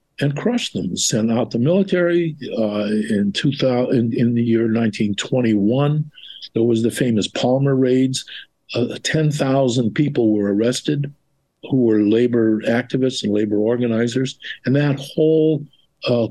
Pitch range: 115-140 Hz